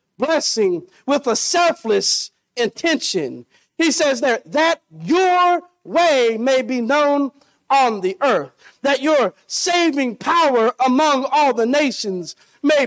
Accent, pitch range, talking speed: American, 205-280 Hz, 120 wpm